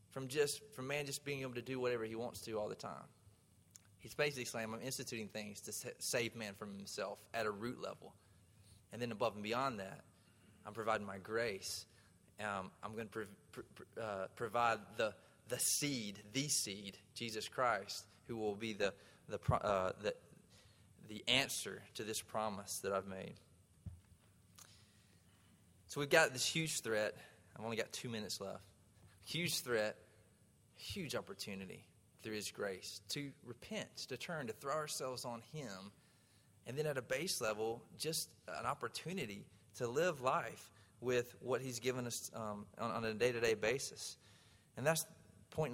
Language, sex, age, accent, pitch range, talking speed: English, male, 20-39, American, 100-130 Hz, 170 wpm